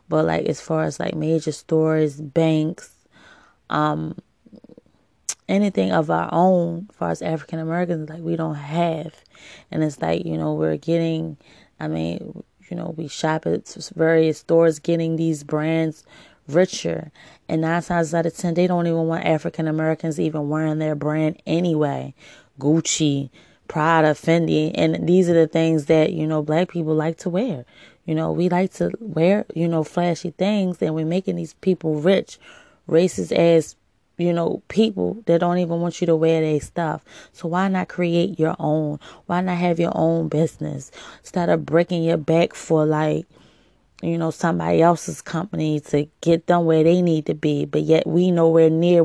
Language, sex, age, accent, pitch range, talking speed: English, female, 20-39, American, 155-170 Hz, 170 wpm